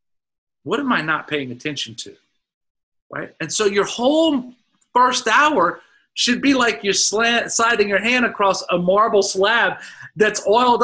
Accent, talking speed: American, 150 wpm